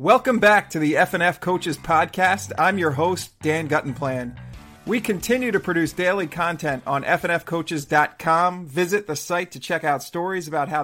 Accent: American